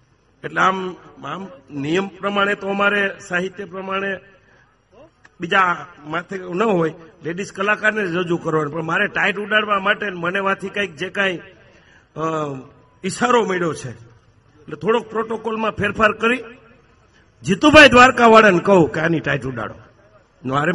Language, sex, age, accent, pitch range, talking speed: Gujarati, male, 50-69, native, 140-195 Hz, 115 wpm